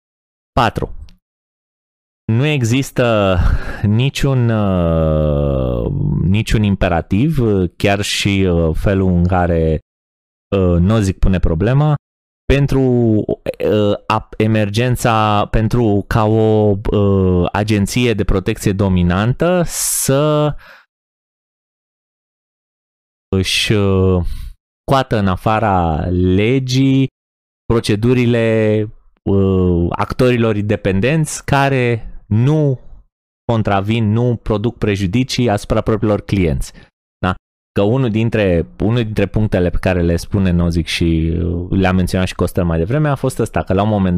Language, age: Romanian, 30-49